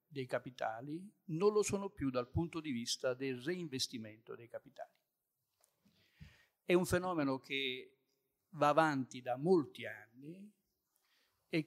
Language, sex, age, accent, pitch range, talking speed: Italian, male, 50-69, native, 130-175 Hz, 125 wpm